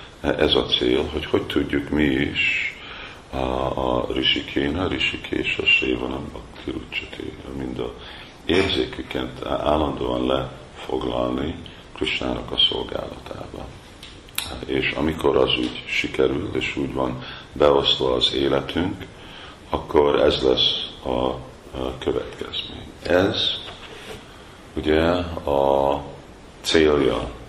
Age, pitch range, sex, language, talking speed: 50-69, 65-75 Hz, male, Hungarian, 100 wpm